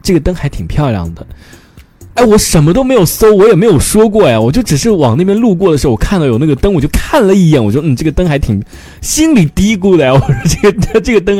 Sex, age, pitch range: male, 20-39, 115-180 Hz